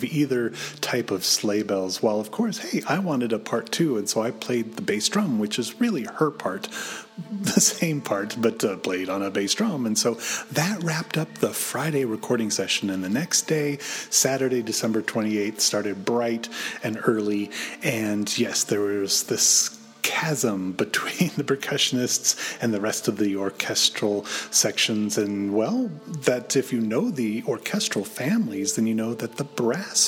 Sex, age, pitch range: male, 30-49, 105-160 Hz